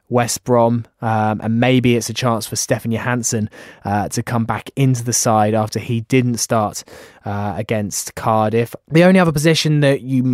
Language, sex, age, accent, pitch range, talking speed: English, male, 20-39, British, 110-130 Hz, 180 wpm